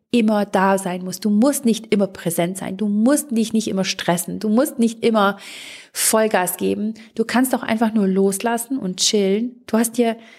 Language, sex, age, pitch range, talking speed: German, female, 30-49, 190-225 Hz, 190 wpm